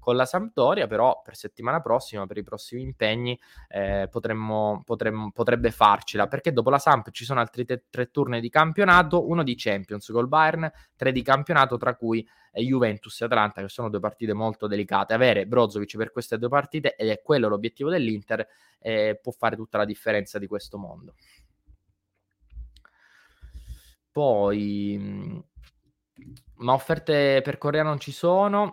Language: Italian